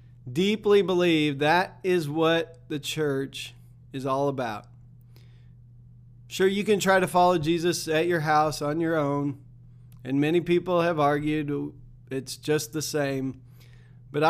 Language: English